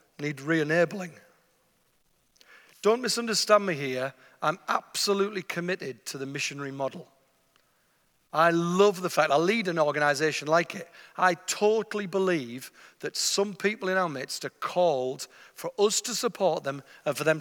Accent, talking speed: British, 145 wpm